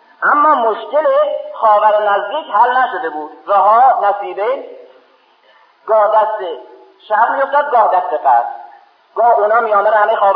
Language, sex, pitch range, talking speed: Persian, male, 185-285 Hz, 120 wpm